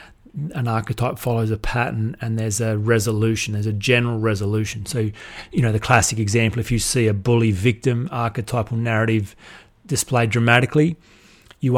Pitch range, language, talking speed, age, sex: 110-125 Hz, English, 155 wpm, 30-49, male